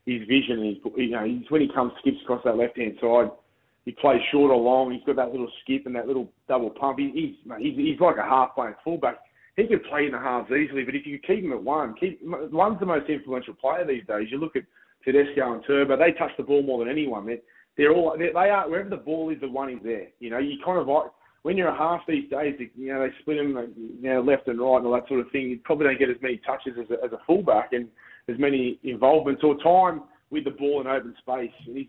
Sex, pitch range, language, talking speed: male, 130-160 Hz, English, 260 wpm